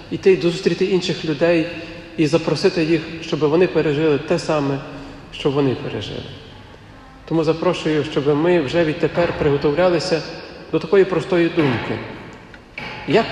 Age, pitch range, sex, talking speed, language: 40-59, 130-170 Hz, male, 125 wpm, Ukrainian